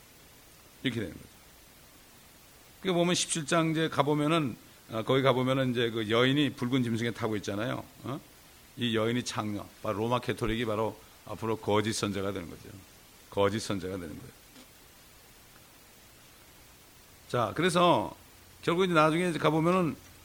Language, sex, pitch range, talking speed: English, male, 105-140 Hz, 125 wpm